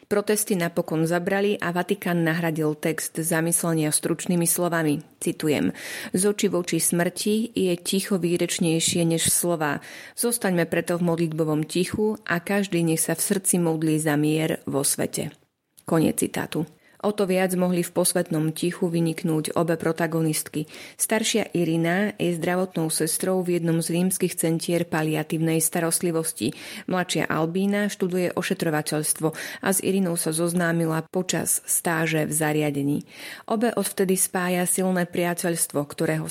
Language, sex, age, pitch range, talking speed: Slovak, female, 30-49, 165-190 Hz, 130 wpm